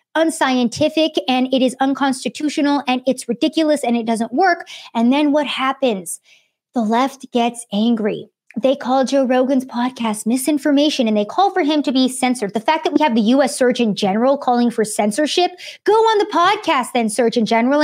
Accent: American